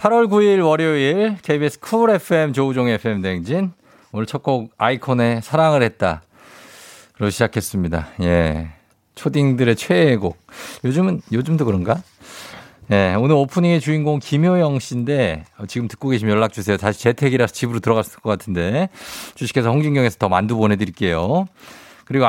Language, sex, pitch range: Korean, male, 105-145 Hz